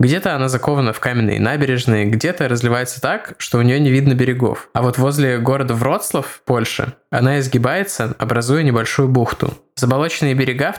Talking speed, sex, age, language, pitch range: 160 wpm, male, 20-39, Russian, 120-150 Hz